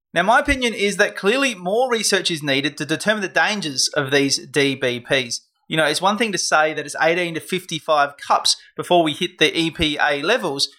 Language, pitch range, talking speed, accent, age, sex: English, 145-195 Hz, 200 wpm, Australian, 30-49, male